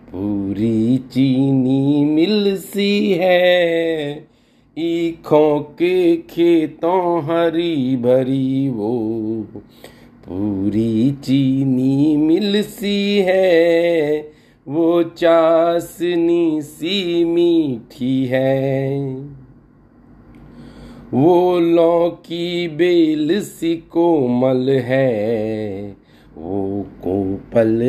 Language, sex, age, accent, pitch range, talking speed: Hindi, male, 50-69, native, 130-170 Hz, 60 wpm